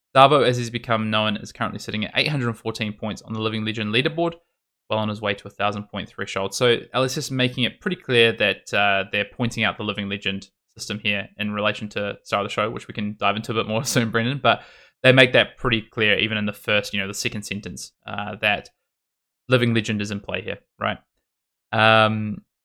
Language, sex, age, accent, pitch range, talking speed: English, male, 20-39, Australian, 100-120 Hz, 220 wpm